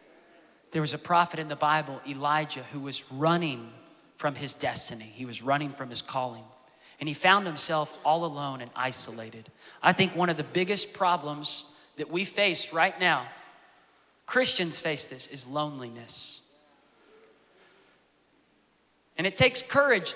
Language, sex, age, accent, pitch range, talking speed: English, male, 30-49, American, 135-175 Hz, 145 wpm